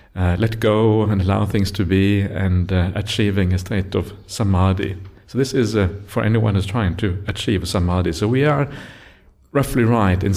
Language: English